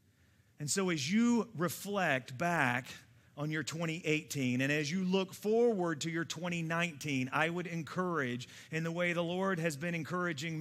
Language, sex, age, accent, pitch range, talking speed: English, male, 40-59, American, 125-175 Hz, 160 wpm